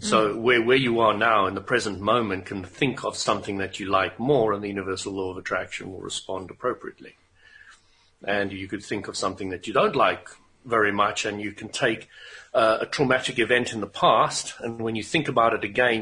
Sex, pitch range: male, 100-130 Hz